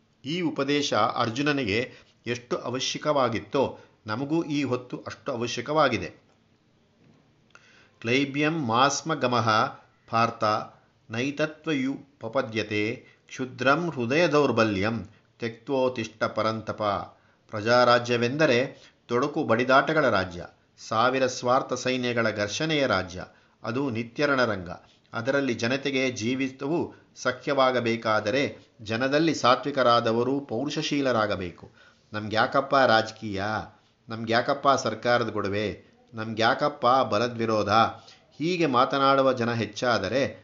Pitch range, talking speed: 110-135 Hz, 75 wpm